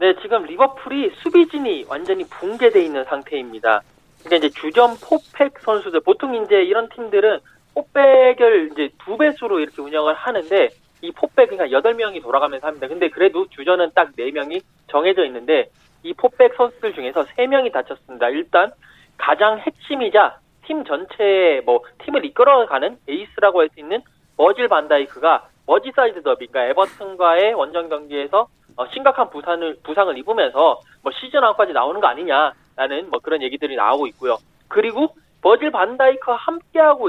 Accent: native